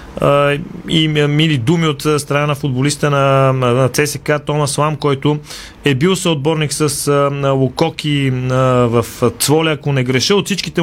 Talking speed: 125 wpm